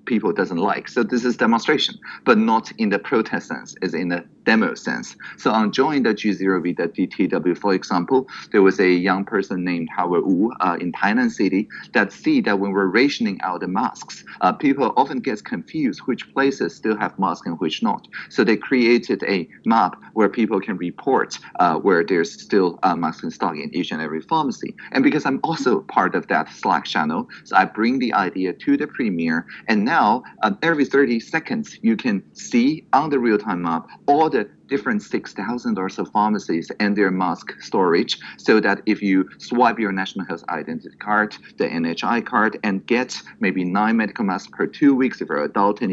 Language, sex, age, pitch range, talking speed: English, male, 30-49, 95-140 Hz, 195 wpm